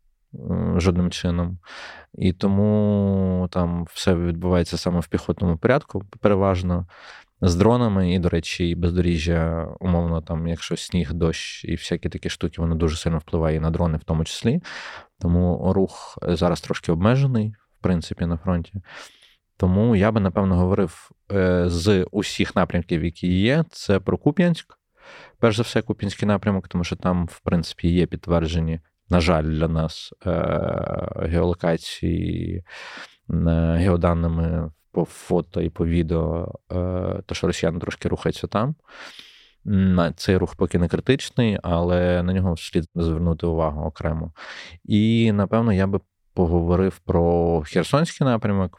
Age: 20-39